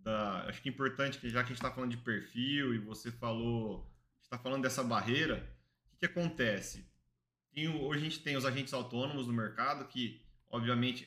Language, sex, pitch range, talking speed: Portuguese, male, 120-170 Hz, 205 wpm